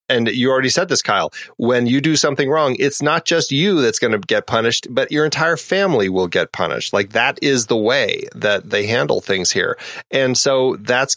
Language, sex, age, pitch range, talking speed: English, male, 30-49, 105-140 Hz, 215 wpm